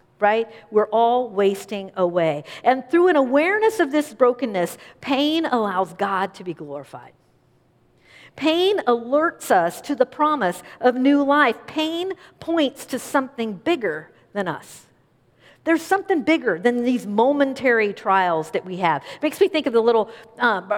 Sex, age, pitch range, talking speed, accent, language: female, 50-69, 210-290 Hz, 150 wpm, American, English